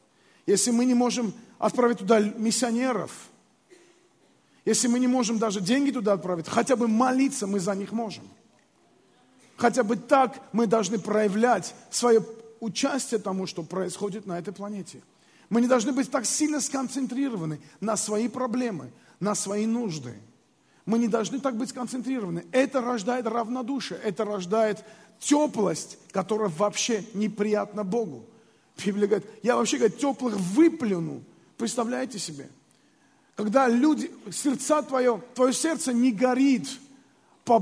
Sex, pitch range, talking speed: male, 210-260 Hz, 130 wpm